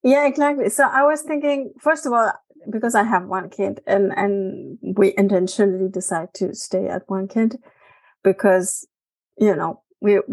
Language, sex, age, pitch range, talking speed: English, female, 30-49, 195-245 Hz, 165 wpm